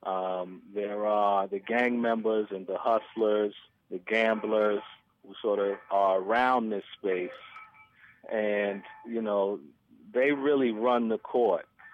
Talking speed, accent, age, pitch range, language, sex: 130 wpm, American, 30-49, 100-120 Hz, English, male